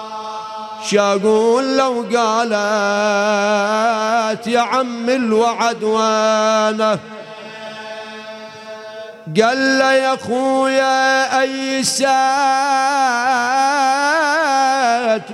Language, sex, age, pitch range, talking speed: Arabic, male, 40-59, 220-260 Hz, 45 wpm